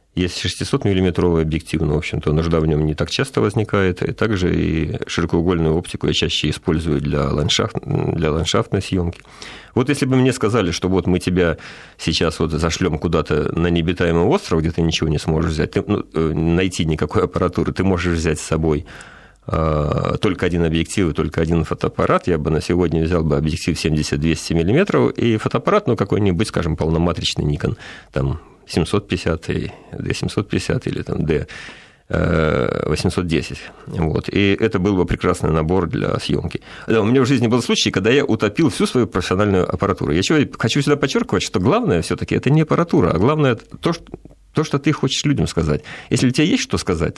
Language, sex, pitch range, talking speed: Russian, male, 80-100 Hz, 175 wpm